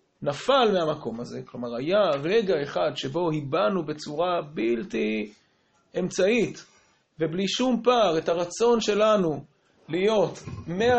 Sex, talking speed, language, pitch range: male, 110 wpm, Hebrew, 140-180 Hz